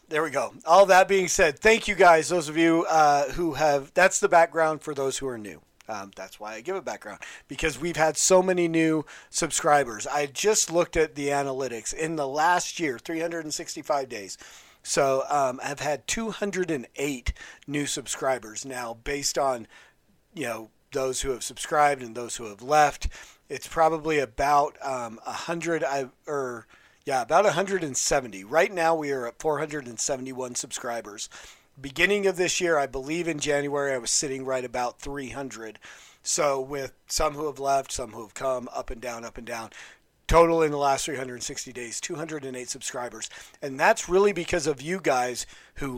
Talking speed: 175 wpm